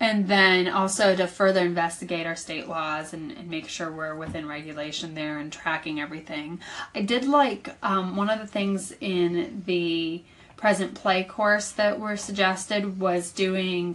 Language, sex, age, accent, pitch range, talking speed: English, female, 20-39, American, 170-200 Hz, 165 wpm